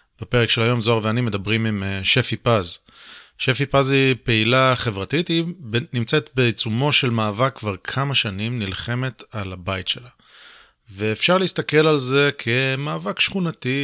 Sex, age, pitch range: male, 30-49, 105-135 Hz